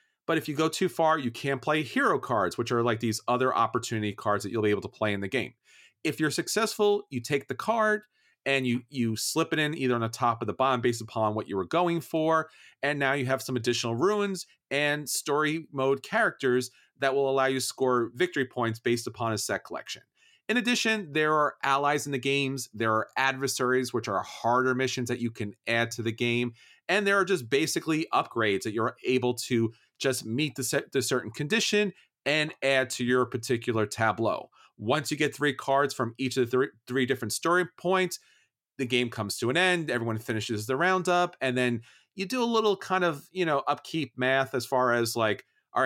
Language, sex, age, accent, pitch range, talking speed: English, male, 40-59, American, 120-155 Hz, 215 wpm